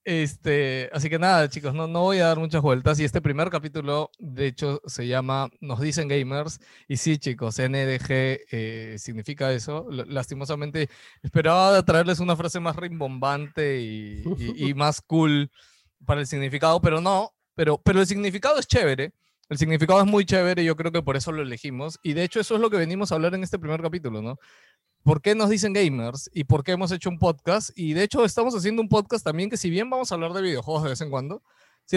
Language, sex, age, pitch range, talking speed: Spanish, male, 20-39, 135-175 Hz, 215 wpm